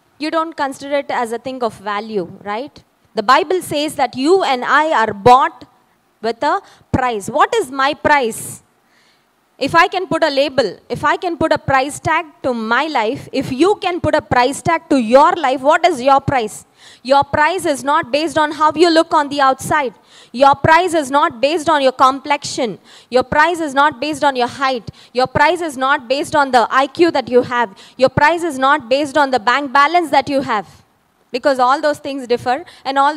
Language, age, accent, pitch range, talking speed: English, 20-39, Indian, 235-300 Hz, 205 wpm